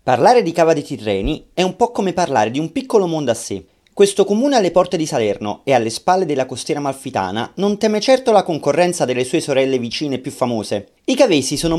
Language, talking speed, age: Italian, 215 wpm, 30-49